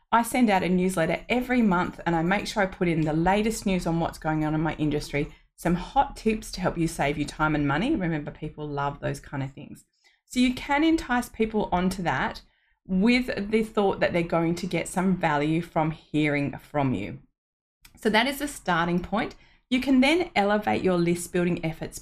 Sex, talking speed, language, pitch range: female, 210 wpm, English, 160-210 Hz